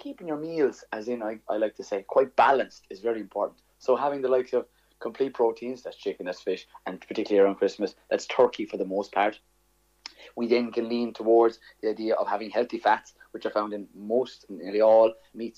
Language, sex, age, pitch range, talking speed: English, male, 30-49, 115-135 Hz, 210 wpm